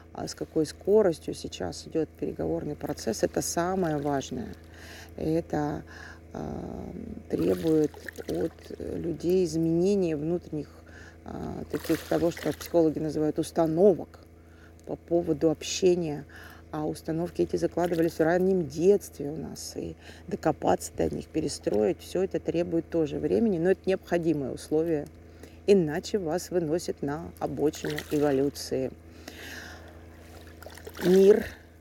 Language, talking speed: Russian, 110 wpm